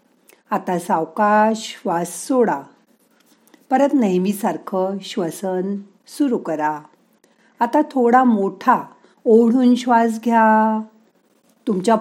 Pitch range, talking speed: 190-240 Hz, 85 wpm